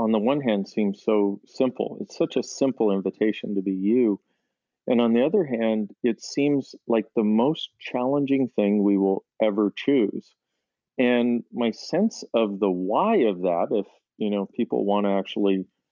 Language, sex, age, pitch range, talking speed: English, male, 40-59, 100-120 Hz, 175 wpm